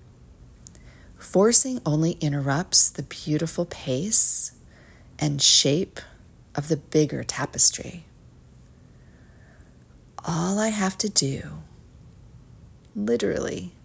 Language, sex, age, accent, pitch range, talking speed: English, female, 40-59, American, 115-180 Hz, 80 wpm